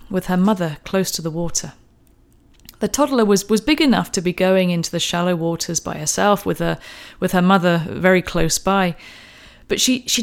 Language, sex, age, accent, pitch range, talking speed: English, female, 30-49, British, 180-235 Hz, 190 wpm